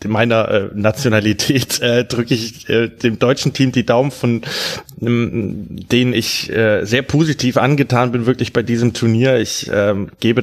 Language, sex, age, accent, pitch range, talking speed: German, male, 20-39, German, 115-135 Hz, 160 wpm